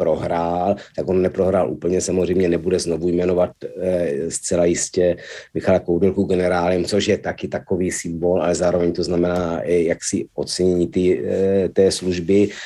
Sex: male